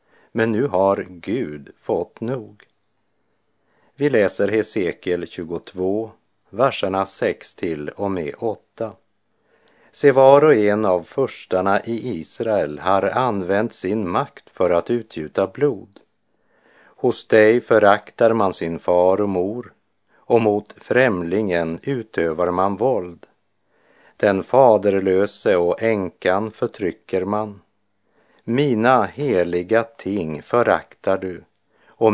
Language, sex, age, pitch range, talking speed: Spanish, male, 50-69, 90-110 Hz, 110 wpm